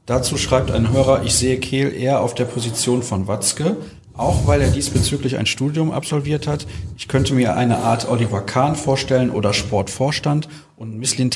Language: German